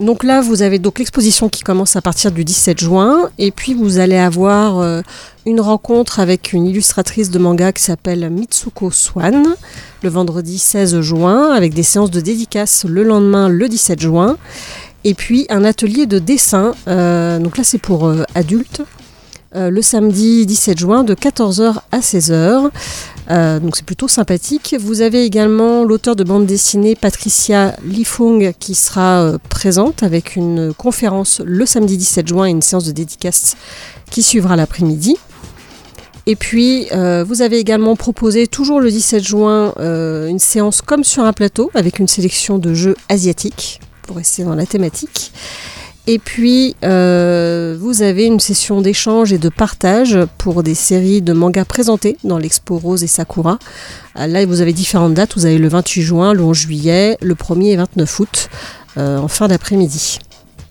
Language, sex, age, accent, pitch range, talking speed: French, female, 40-59, French, 175-220 Hz, 170 wpm